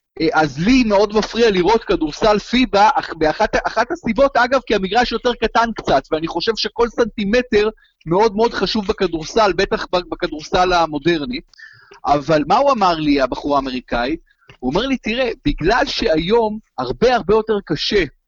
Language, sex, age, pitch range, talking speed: Hebrew, male, 30-49, 175-235 Hz, 150 wpm